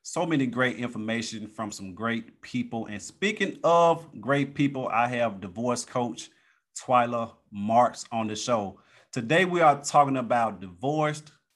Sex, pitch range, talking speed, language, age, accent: male, 110-135 Hz, 145 wpm, English, 30-49, American